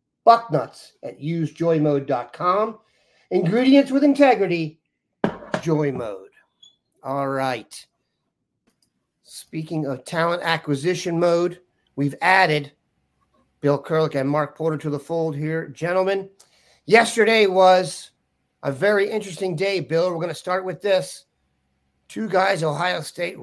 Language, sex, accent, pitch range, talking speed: English, male, American, 145-185 Hz, 115 wpm